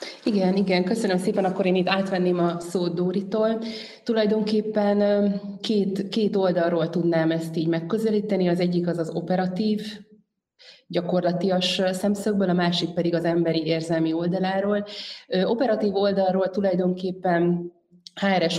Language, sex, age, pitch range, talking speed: Hungarian, female, 30-49, 165-195 Hz, 120 wpm